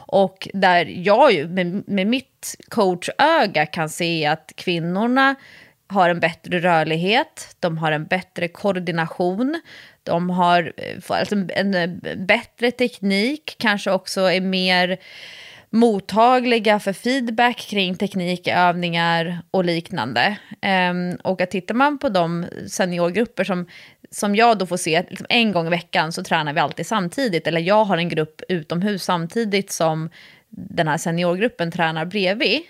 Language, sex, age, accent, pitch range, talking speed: English, female, 30-49, Swedish, 170-210 Hz, 130 wpm